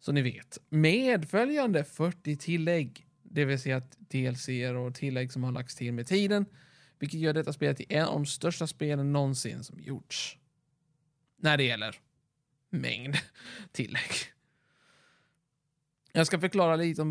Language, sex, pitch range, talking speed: Swedish, male, 140-160 Hz, 150 wpm